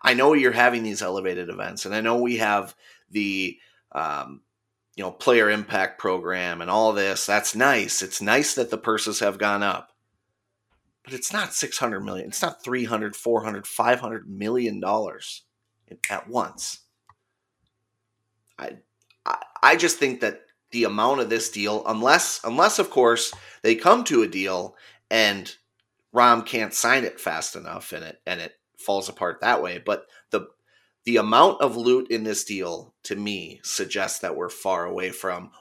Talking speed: 160 wpm